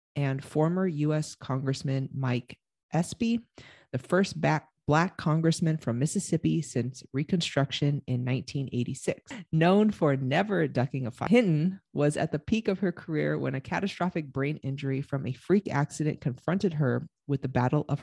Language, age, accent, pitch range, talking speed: English, 30-49, American, 140-190 Hz, 150 wpm